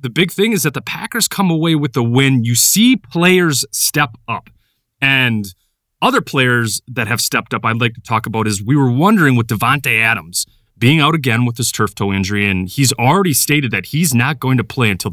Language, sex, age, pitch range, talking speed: English, male, 30-49, 115-155 Hz, 220 wpm